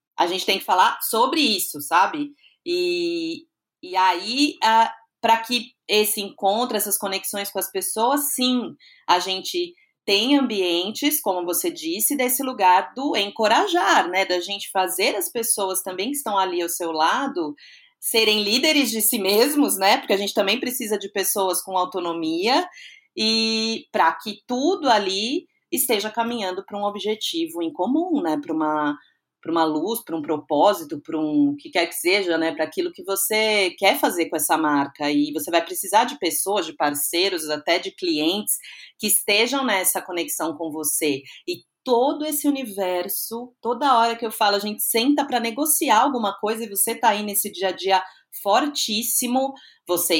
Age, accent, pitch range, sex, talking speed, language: 30-49, Brazilian, 175-270 Hz, female, 165 wpm, Portuguese